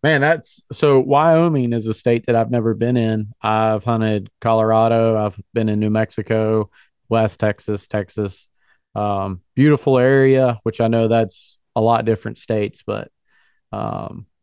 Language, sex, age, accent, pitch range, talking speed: English, male, 30-49, American, 110-125 Hz, 150 wpm